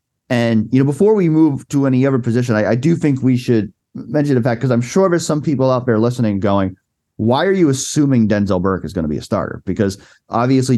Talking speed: 240 wpm